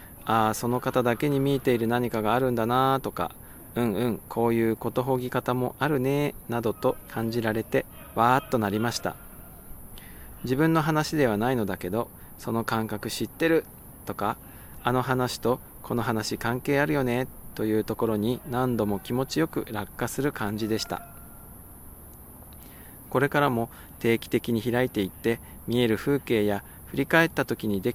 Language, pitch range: Japanese, 110-135 Hz